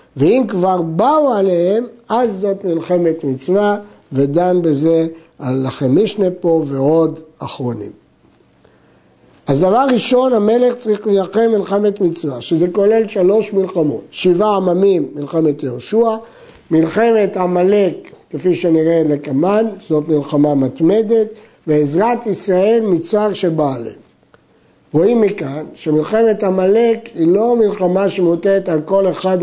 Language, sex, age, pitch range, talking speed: Hebrew, male, 60-79, 160-215 Hz, 110 wpm